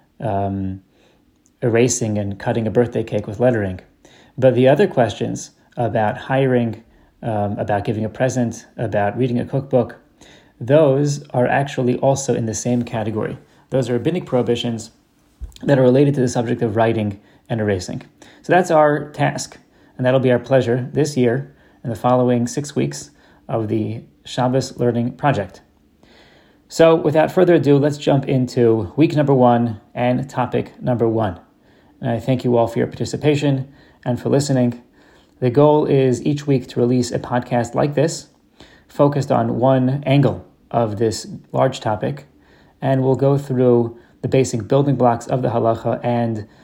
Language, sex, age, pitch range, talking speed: English, male, 30-49, 115-135 Hz, 160 wpm